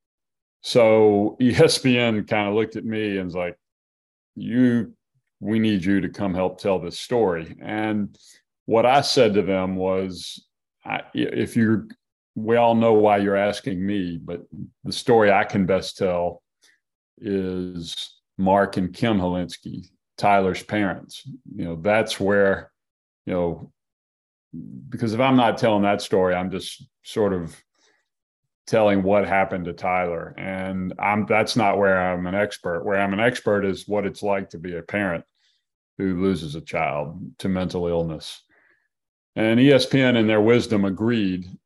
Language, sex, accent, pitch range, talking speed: English, male, American, 90-105 Hz, 150 wpm